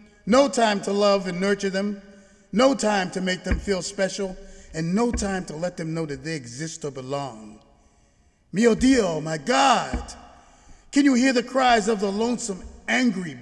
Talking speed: 175 wpm